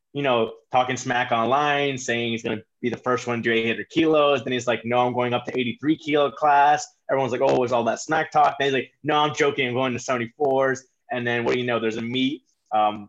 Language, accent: English, American